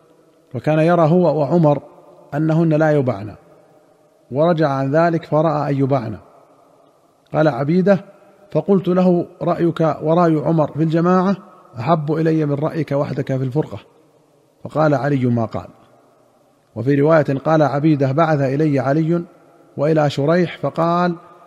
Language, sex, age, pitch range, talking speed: Arabic, male, 40-59, 140-165 Hz, 115 wpm